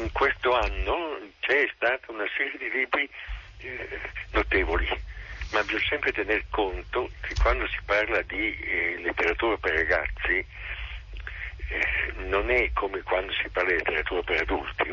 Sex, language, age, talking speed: male, Italian, 60-79, 140 wpm